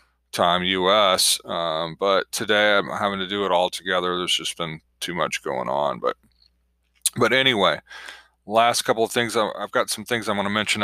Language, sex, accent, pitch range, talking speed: English, male, American, 95-125 Hz, 190 wpm